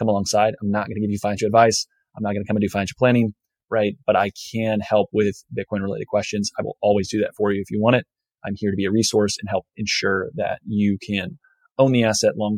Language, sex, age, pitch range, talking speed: English, male, 20-39, 100-110 Hz, 260 wpm